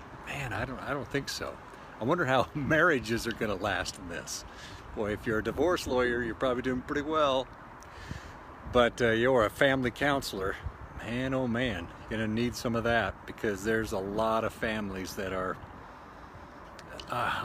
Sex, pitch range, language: male, 105-135 Hz, English